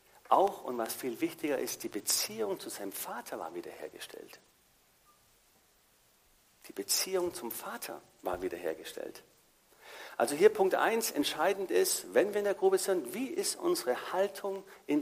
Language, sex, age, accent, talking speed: German, male, 50-69, German, 145 wpm